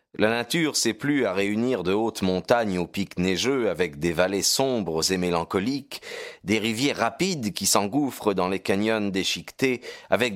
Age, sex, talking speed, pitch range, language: 40-59, male, 160 wpm, 90-120 Hz, French